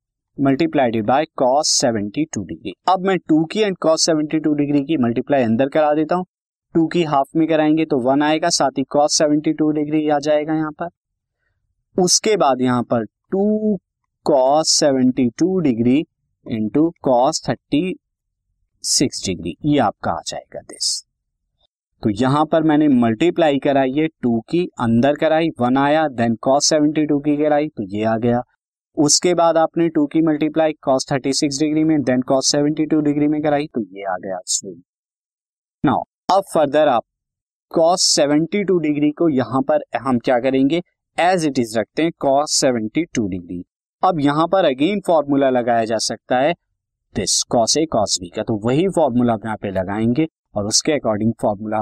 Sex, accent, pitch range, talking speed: male, native, 120-160 Hz, 115 wpm